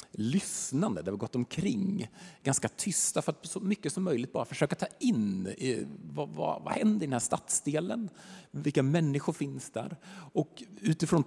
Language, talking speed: Swedish, 165 wpm